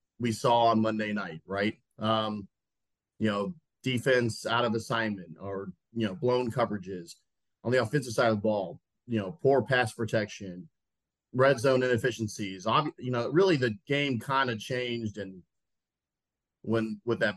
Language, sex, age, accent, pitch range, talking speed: English, male, 30-49, American, 105-130 Hz, 155 wpm